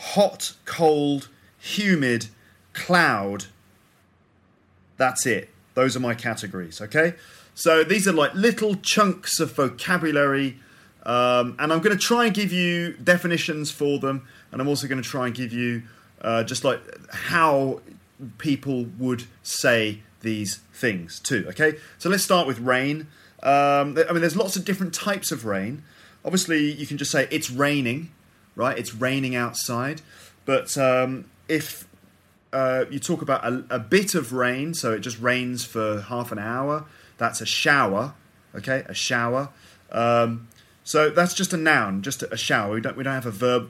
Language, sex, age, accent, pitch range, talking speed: English, male, 30-49, British, 110-155 Hz, 165 wpm